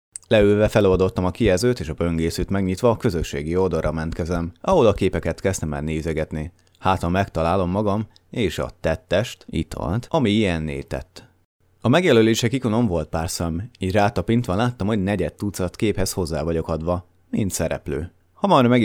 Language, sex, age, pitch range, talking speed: Hungarian, male, 30-49, 85-105 Hz, 160 wpm